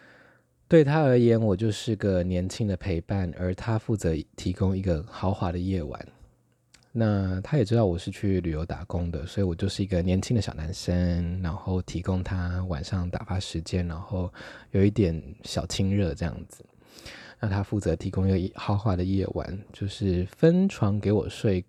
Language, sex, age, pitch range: Chinese, male, 20-39, 90-110 Hz